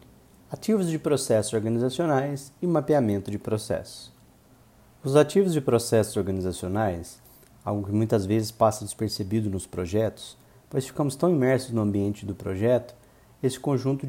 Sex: male